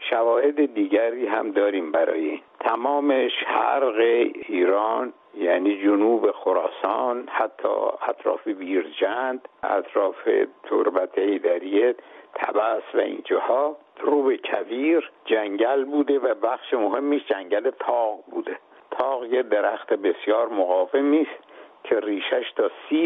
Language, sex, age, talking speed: Persian, male, 60-79, 105 wpm